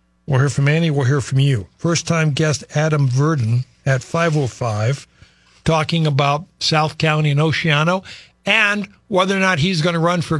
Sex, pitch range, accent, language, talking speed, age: male, 140-180 Hz, American, English, 165 wpm, 60-79